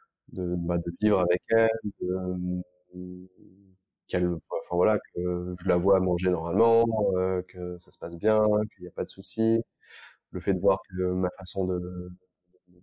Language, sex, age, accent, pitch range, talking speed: French, male, 20-39, French, 90-95 Hz, 175 wpm